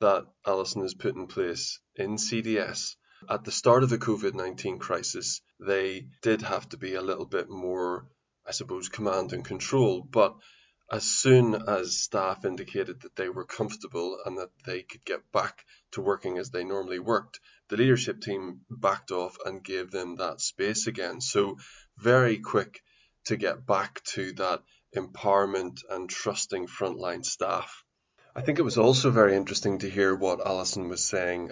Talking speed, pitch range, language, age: 170 wpm, 90-105 Hz, English, 20-39